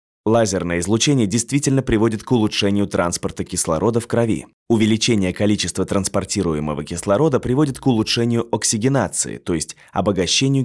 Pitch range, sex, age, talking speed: 90-115 Hz, male, 20-39, 120 wpm